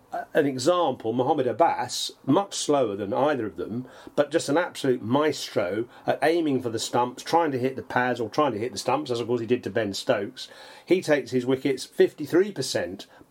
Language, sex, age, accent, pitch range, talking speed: English, male, 40-59, British, 120-150 Hz, 200 wpm